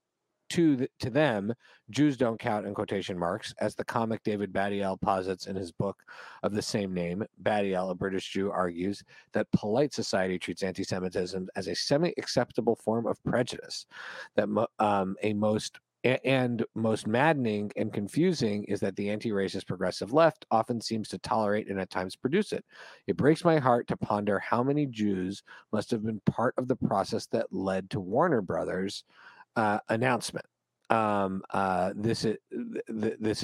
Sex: male